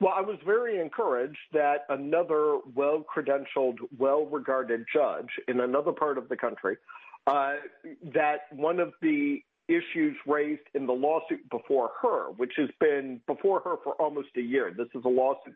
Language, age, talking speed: English, 50-69, 160 wpm